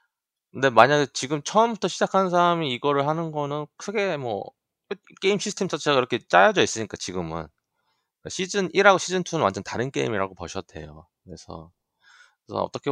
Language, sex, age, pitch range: Korean, male, 20-39, 90-140 Hz